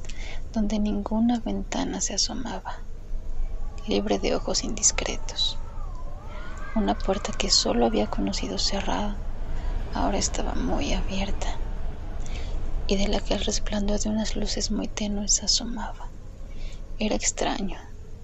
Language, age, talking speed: Spanish, 30-49, 110 wpm